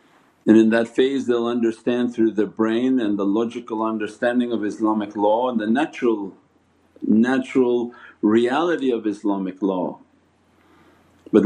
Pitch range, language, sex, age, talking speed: 110-130 Hz, English, male, 50-69, 130 wpm